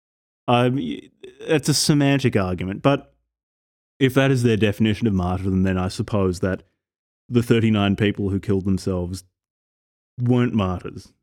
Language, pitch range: English, 95-125 Hz